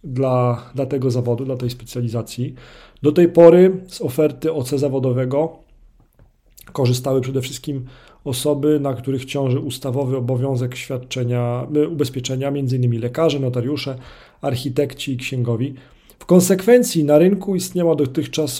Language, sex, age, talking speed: Polish, male, 40-59, 120 wpm